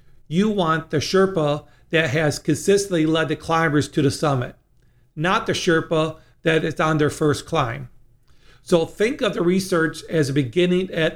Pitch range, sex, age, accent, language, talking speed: 145-175 Hz, male, 50-69, American, English, 165 wpm